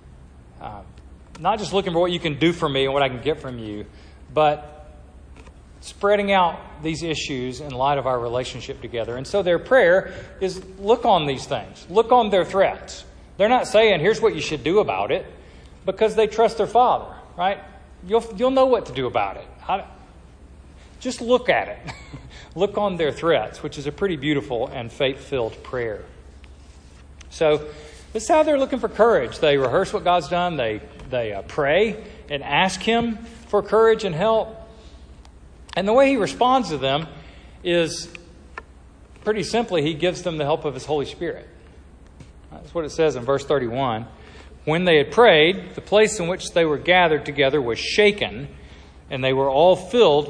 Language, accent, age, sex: English, American, 40-59, male